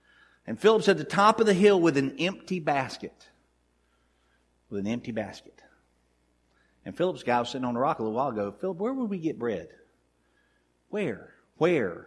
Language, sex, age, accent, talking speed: English, male, 50-69, American, 180 wpm